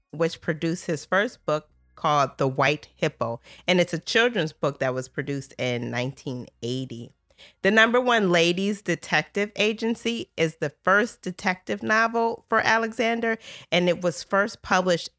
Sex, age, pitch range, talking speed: female, 40-59, 140-185 Hz, 145 wpm